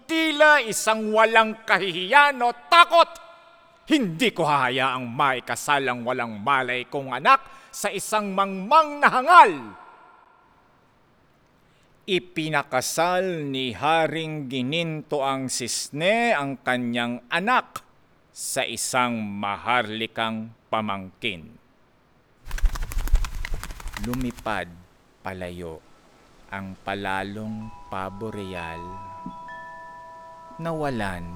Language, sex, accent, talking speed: Filipino, male, native, 70 wpm